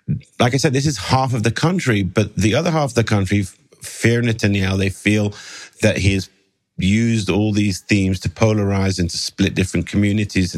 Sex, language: male, English